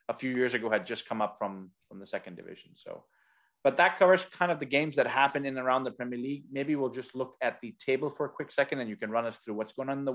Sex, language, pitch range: male, English, 125-155 Hz